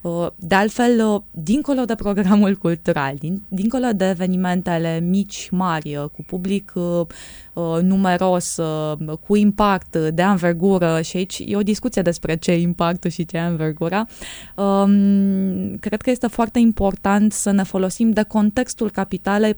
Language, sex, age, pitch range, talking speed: Romanian, female, 20-39, 165-210 Hz, 130 wpm